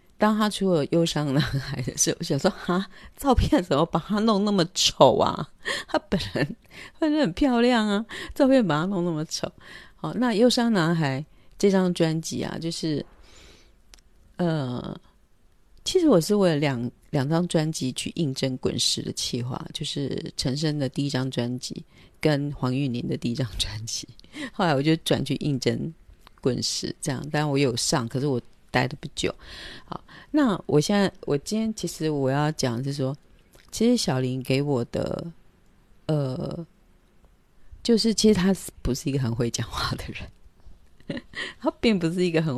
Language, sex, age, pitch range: Chinese, female, 40-59, 135-195 Hz